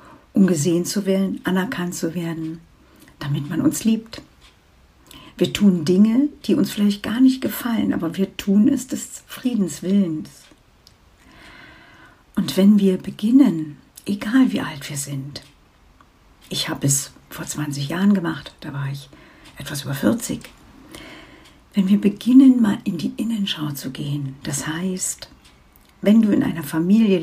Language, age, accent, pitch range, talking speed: German, 60-79, German, 135-205 Hz, 140 wpm